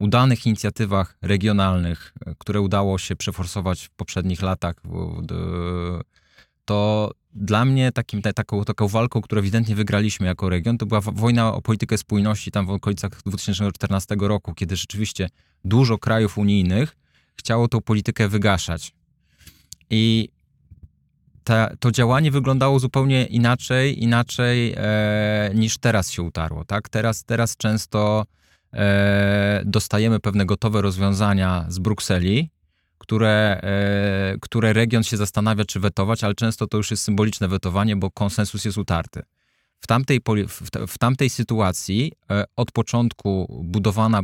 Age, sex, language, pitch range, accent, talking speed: 20-39, male, Polish, 95-115 Hz, native, 125 wpm